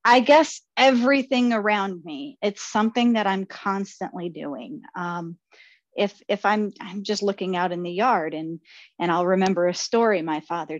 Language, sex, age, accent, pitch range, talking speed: English, female, 40-59, American, 175-235 Hz, 160 wpm